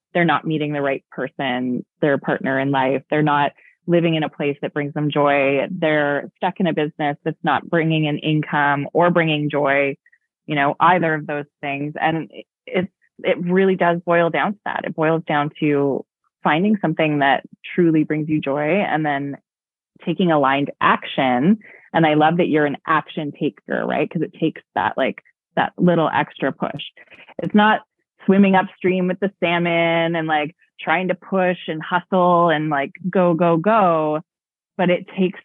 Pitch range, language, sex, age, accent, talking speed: 145-180 Hz, English, female, 20-39, American, 175 wpm